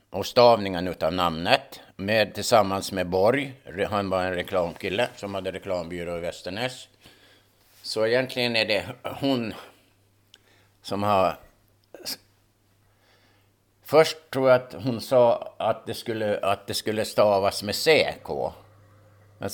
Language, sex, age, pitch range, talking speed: Swedish, male, 60-79, 100-125 Hz, 125 wpm